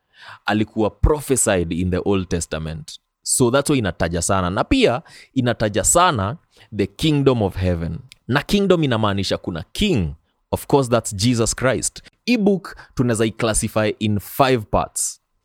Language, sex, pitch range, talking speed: Swahili, male, 95-135 Hz, 140 wpm